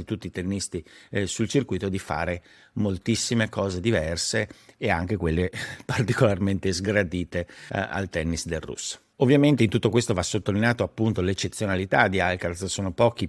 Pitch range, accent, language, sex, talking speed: 90-110 Hz, native, Italian, male, 145 wpm